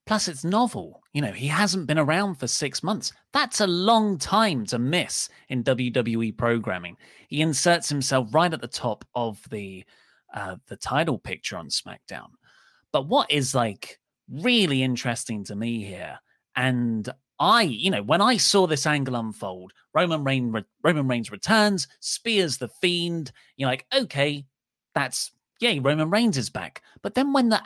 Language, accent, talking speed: English, British, 165 wpm